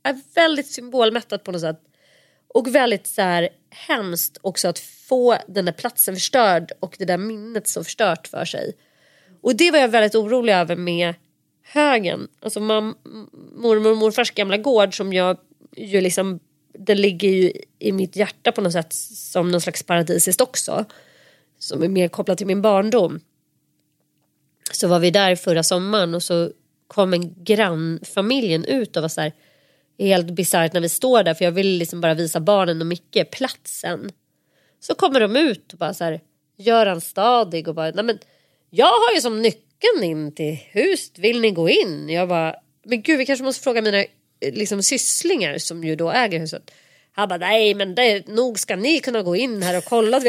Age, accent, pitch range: 30-49, native, 170-235 Hz